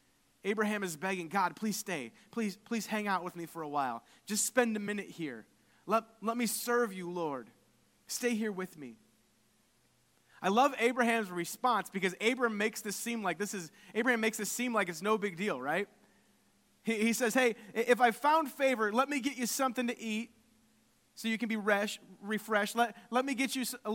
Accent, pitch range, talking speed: American, 205-250 Hz, 200 wpm